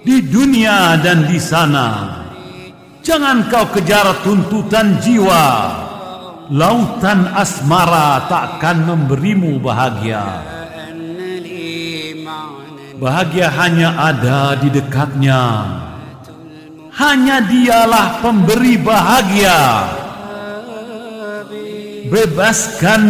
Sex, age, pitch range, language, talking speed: male, 50-69, 145-215 Hz, Indonesian, 65 wpm